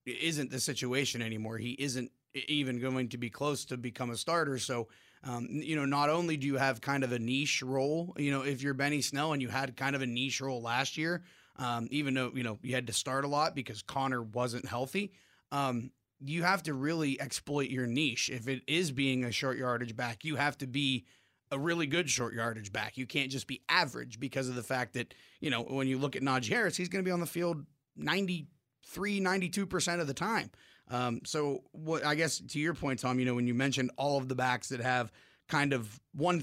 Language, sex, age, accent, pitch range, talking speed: English, male, 30-49, American, 125-145 Hz, 230 wpm